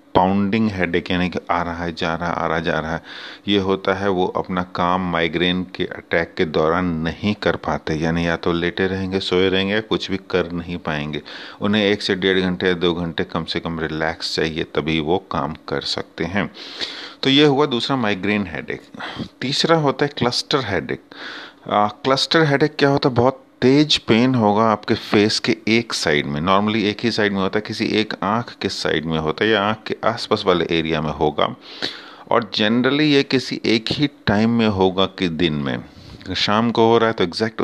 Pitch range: 90-115 Hz